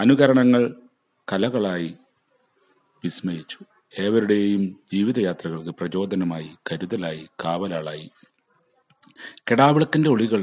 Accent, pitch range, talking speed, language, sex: native, 85-110 Hz, 60 wpm, Malayalam, male